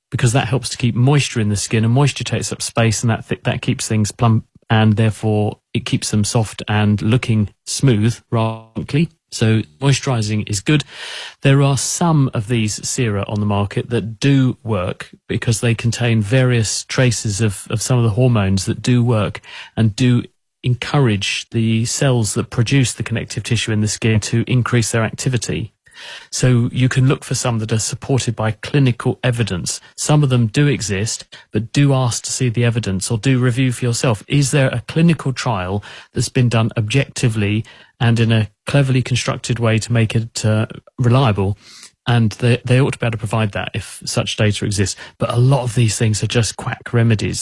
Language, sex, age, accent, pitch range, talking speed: English, male, 30-49, British, 110-130 Hz, 190 wpm